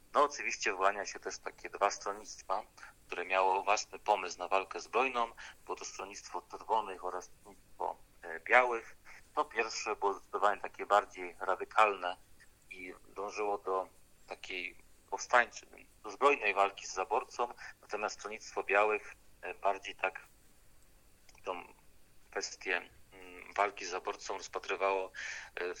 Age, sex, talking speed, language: 40-59, male, 115 wpm, Polish